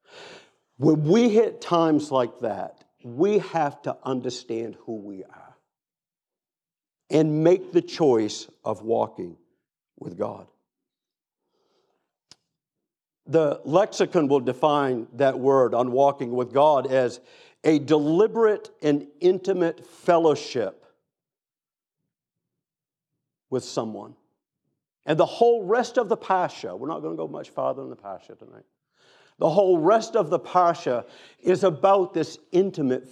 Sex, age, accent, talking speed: male, 50-69, American, 120 wpm